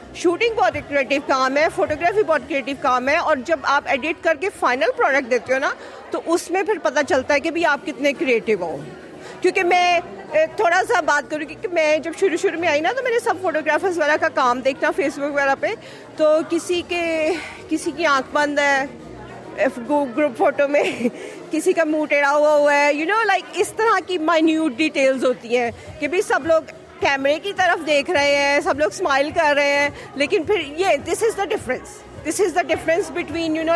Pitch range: 285-335 Hz